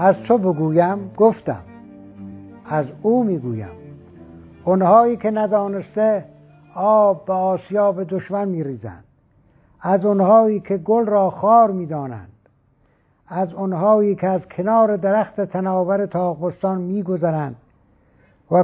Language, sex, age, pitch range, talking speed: Persian, male, 60-79, 140-195 Hz, 105 wpm